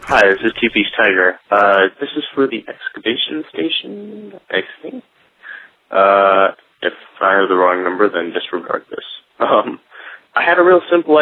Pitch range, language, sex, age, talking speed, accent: 95-130 Hz, English, male, 20-39, 160 wpm, American